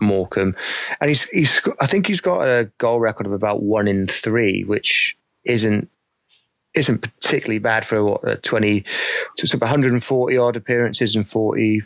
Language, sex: English, male